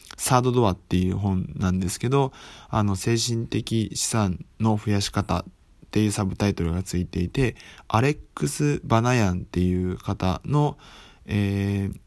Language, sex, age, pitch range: Japanese, male, 20-39, 95-120 Hz